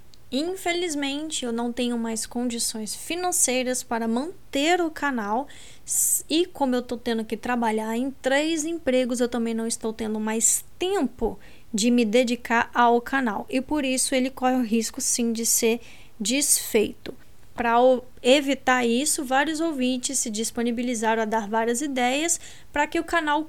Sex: female